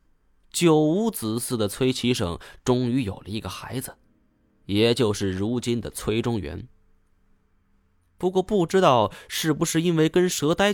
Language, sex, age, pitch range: Chinese, male, 20-39, 95-130 Hz